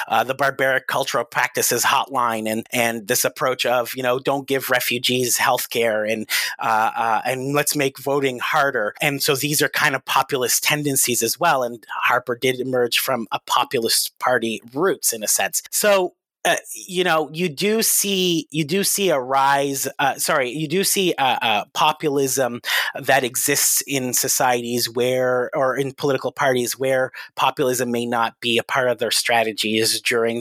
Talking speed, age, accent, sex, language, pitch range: 175 wpm, 30-49, American, male, English, 120-155 Hz